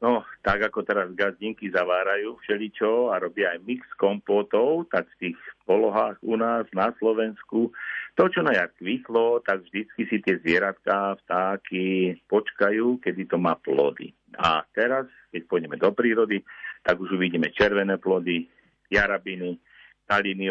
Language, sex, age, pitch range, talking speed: Slovak, male, 50-69, 90-115 Hz, 140 wpm